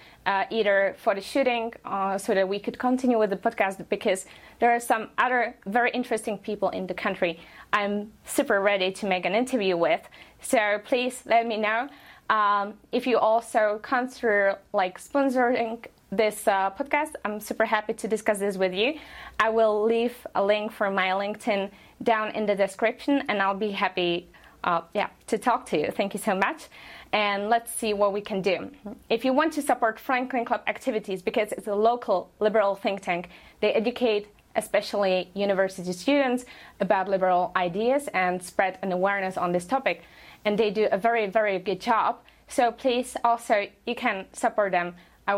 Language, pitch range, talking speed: English, 195-235 Hz, 180 wpm